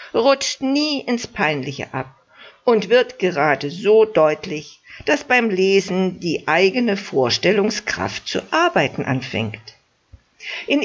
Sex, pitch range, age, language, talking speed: female, 160-225 Hz, 60-79, German, 110 wpm